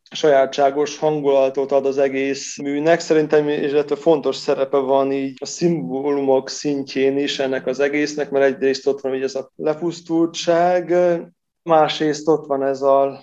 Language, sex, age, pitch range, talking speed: Hungarian, male, 20-39, 135-160 Hz, 145 wpm